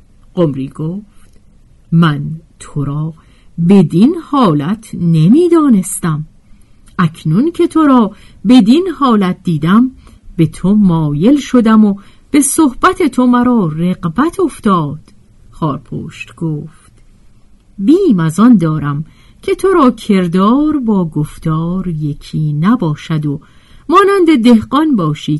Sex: female